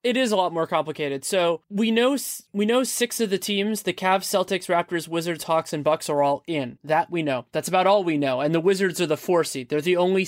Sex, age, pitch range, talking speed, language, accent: male, 20-39, 150-190 Hz, 255 wpm, English, American